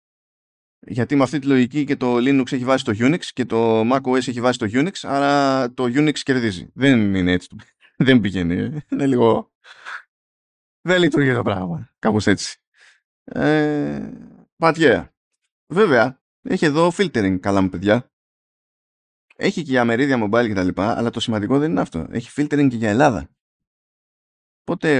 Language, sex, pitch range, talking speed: Greek, male, 105-145 Hz, 150 wpm